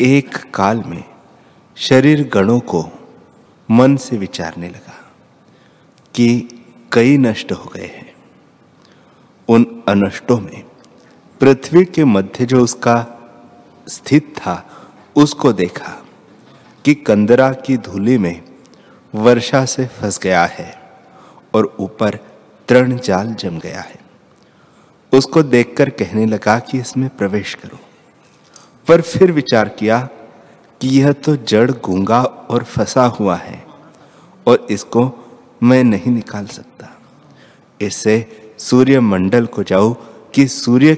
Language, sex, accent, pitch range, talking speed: Hindi, male, native, 105-130 Hz, 115 wpm